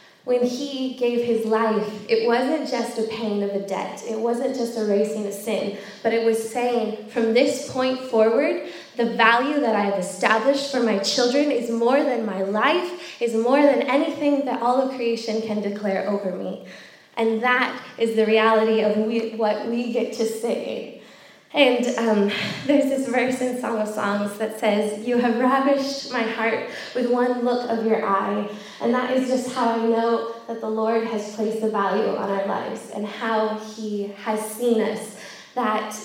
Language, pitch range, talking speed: English, 215-250 Hz, 185 wpm